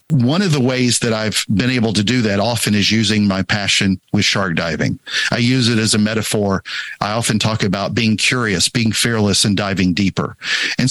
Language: English